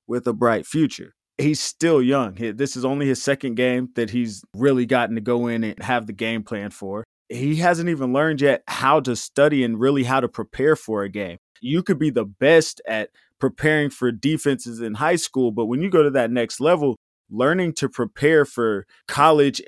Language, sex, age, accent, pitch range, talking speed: English, male, 20-39, American, 120-145 Hz, 205 wpm